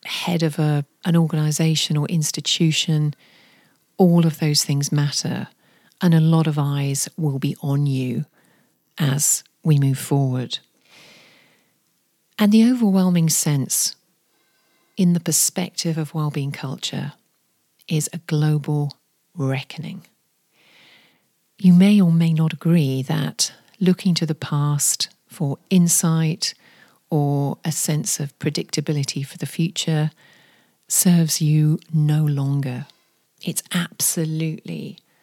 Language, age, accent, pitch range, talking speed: English, 40-59, British, 145-170 Hz, 110 wpm